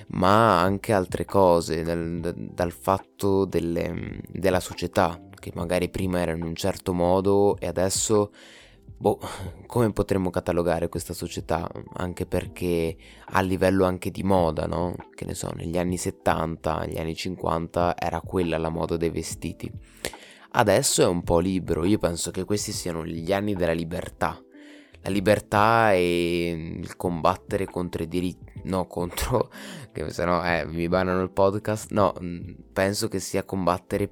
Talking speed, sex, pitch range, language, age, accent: 150 wpm, male, 85-95 Hz, Italian, 20-39, native